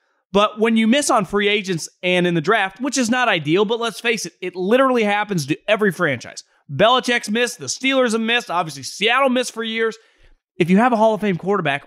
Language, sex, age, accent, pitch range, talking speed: English, male, 30-49, American, 180-245 Hz, 220 wpm